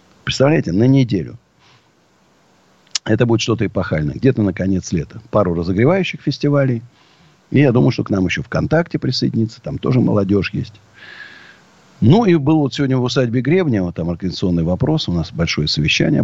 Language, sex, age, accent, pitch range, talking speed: Russian, male, 50-69, native, 100-145 Hz, 155 wpm